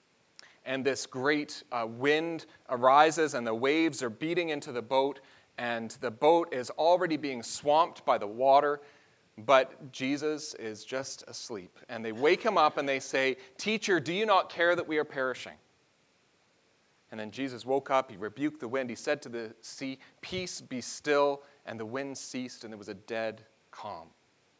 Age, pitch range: 30-49, 120-150 Hz